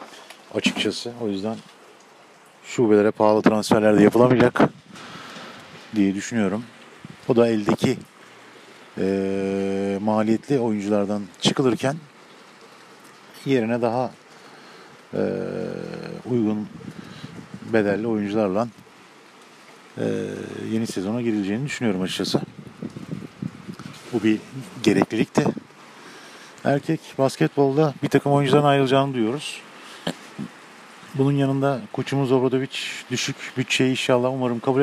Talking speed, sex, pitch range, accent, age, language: 85 wpm, male, 105-130 Hz, native, 50-69, Turkish